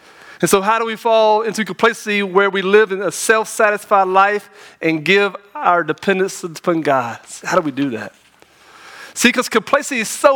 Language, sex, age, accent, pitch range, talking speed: English, male, 40-59, American, 170-230 Hz, 180 wpm